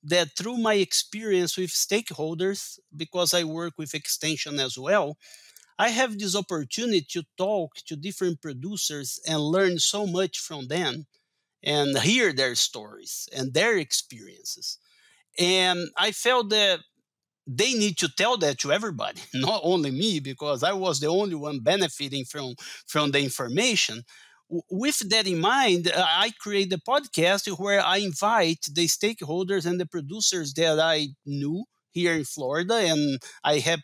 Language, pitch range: English, 150-195 Hz